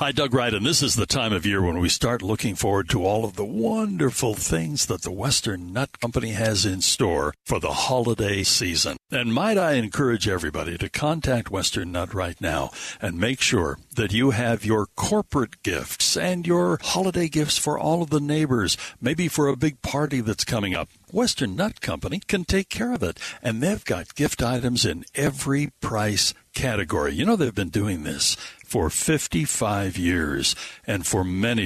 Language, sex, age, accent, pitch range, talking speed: English, male, 60-79, American, 100-145 Hz, 190 wpm